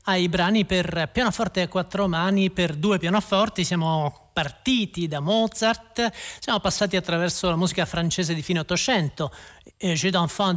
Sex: male